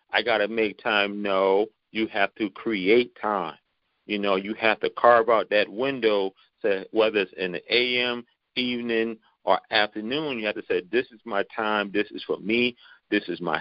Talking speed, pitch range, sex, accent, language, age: 190 wpm, 100-125 Hz, male, American, English, 40-59